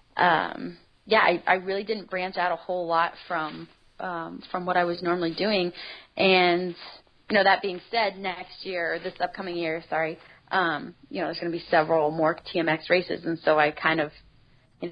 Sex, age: female, 30-49